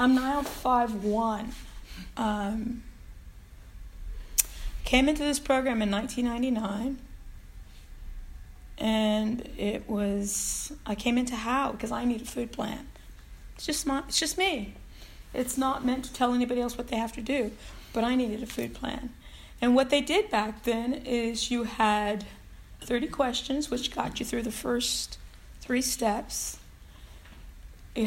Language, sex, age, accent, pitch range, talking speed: English, female, 40-59, American, 210-265 Hz, 145 wpm